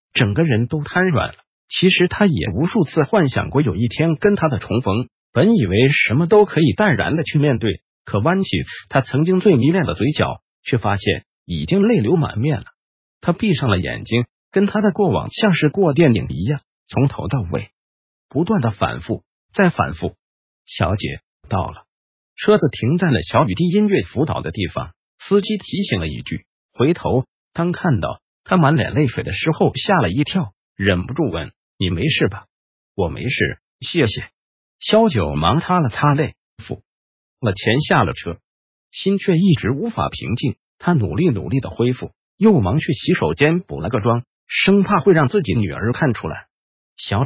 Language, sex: Chinese, male